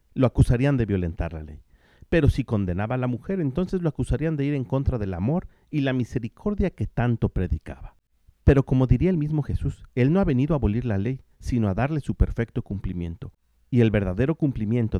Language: Spanish